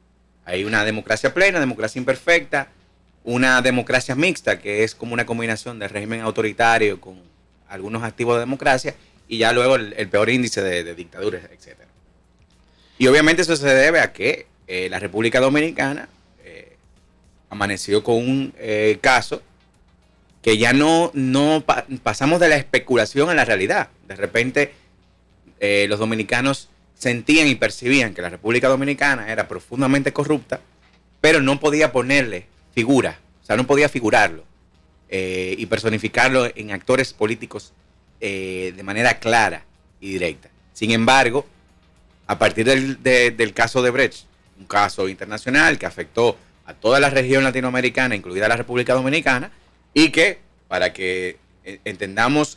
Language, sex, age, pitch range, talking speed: Spanish, male, 30-49, 100-135 Hz, 145 wpm